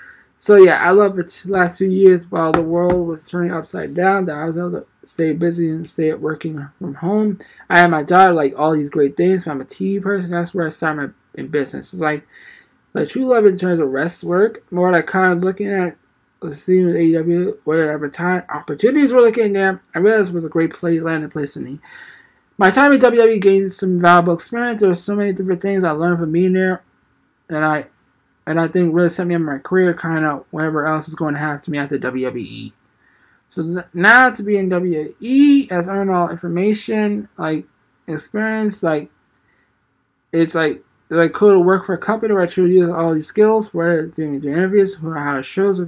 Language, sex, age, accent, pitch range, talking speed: English, male, 20-39, American, 155-190 Hz, 220 wpm